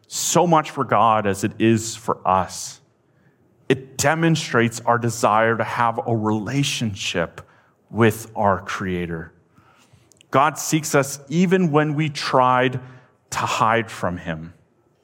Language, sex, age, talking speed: English, male, 30-49, 125 wpm